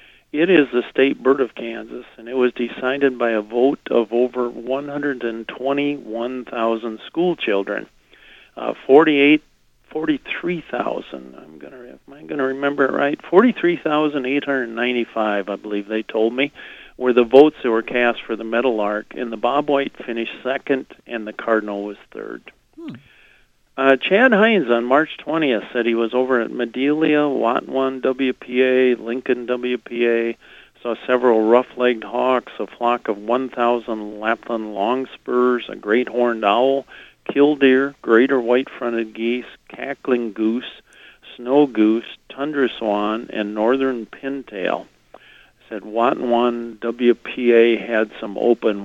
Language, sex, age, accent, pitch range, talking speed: English, male, 50-69, American, 115-135 Hz, 125 wpm